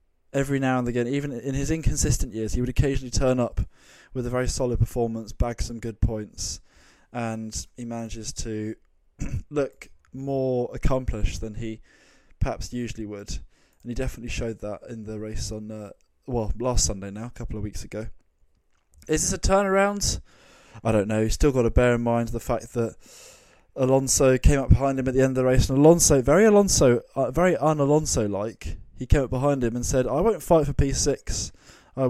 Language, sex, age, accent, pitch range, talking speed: English, male, 20-39, British, 110-135 Hz, 190 wpm